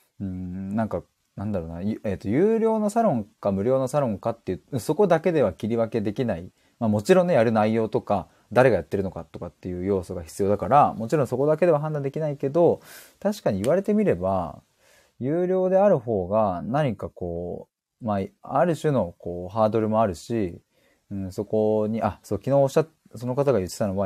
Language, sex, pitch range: Japanese, male, 95-145 Hz